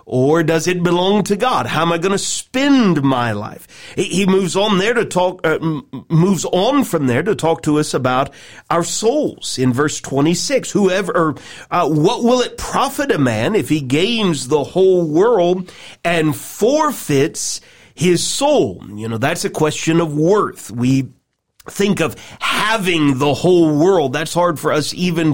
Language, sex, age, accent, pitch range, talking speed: English, male, 40-59, American, 140-190 Hz, 170 wpm